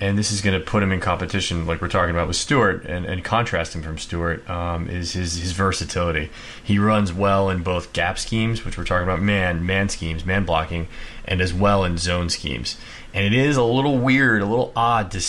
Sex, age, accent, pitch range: male, 30-49, American, 90-110 Hz